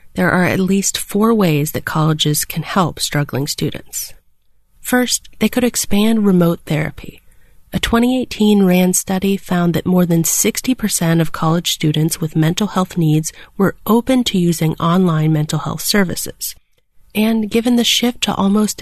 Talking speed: 155 wpm